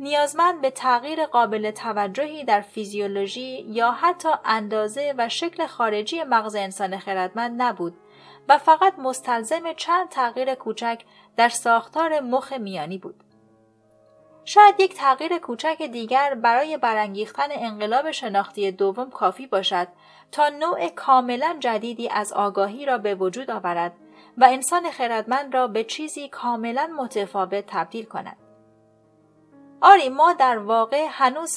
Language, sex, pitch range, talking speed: Persian, female, 205-280 Hz, 125 wpm